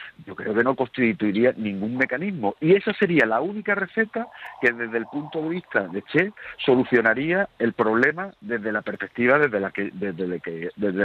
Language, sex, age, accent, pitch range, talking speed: Spanish, male, 50-69, Spanish, 110-165 Hz, 150 wpm